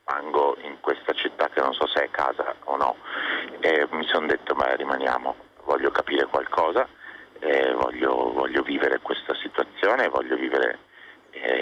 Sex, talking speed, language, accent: male, 150 wpm, Italian, native